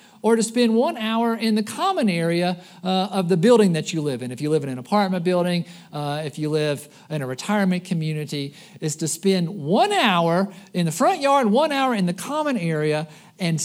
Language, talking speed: English, 210 wpm